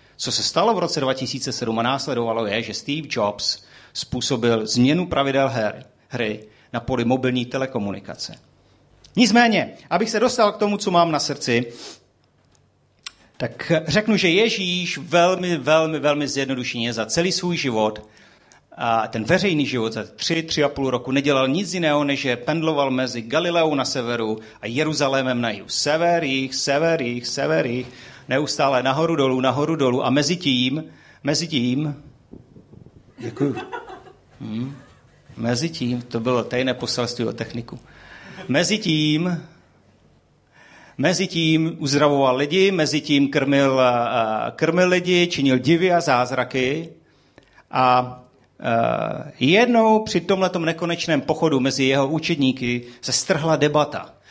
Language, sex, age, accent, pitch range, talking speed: Czech, male, 40-59, native, 125-165 Hz, 125 wpm